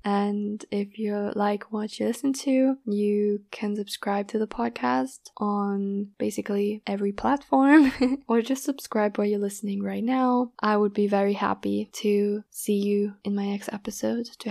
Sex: female